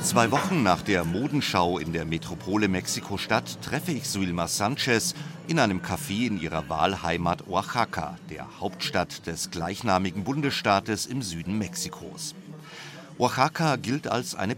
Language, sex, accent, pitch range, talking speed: German, male, German, 95-130 Hz, 130 wpm